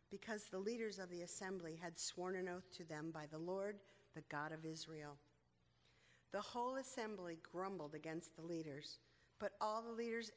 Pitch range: 170-225 Hz